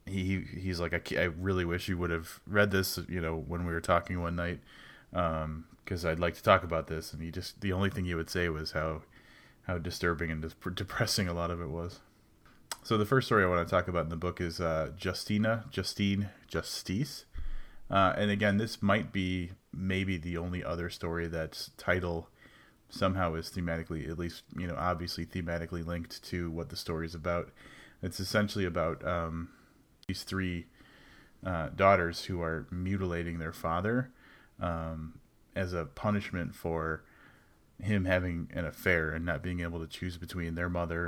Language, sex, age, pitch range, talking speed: English, male, 30-49, 85-95 Hz, 185 wpm